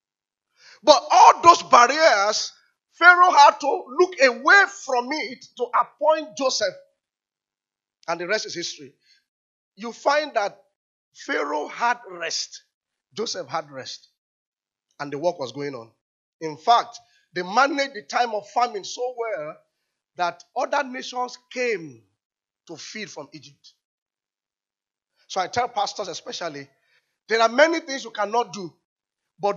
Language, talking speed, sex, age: English, 130 wpm, male, 40-59